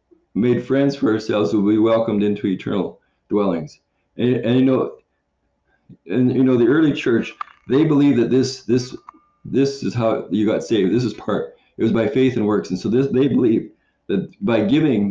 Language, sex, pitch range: English, male, 120-150 Hz